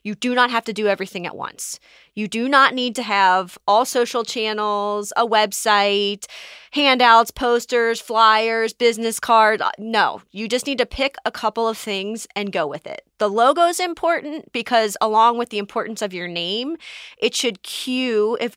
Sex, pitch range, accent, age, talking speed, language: female, 205-240 Hz, American, 20-39, 180 wpm, English